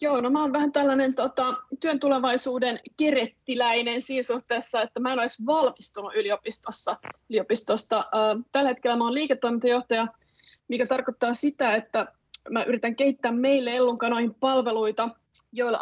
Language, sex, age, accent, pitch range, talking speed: Finnish, female, 20-39, native, 225-260 Hz, 125 wpm